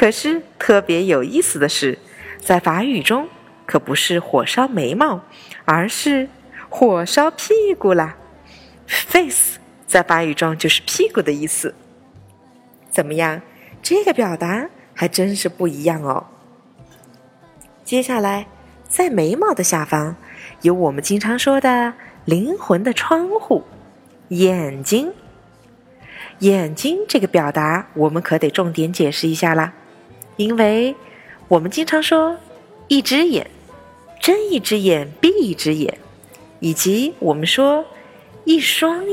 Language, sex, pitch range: Chinese, female, 165-270 Hz